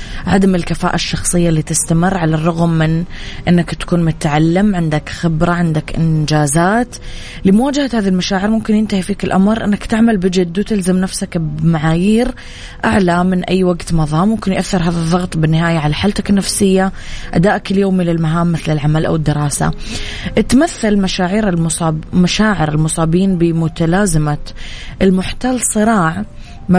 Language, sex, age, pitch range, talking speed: Arabic, female, 20-39, 160-185 Hz, 130 wpm